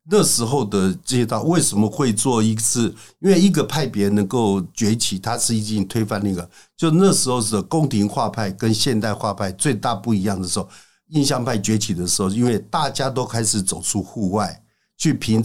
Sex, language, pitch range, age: male, Chinese, 100-135 Hz, 60-79